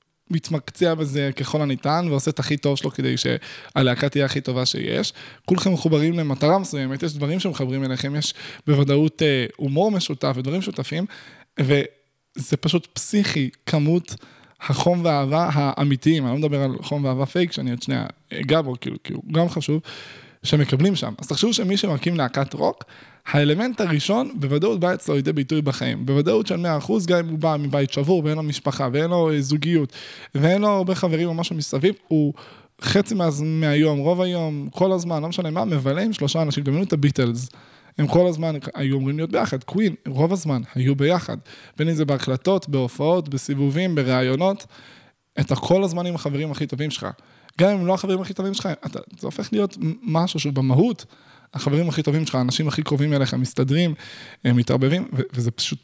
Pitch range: 135-175 Hz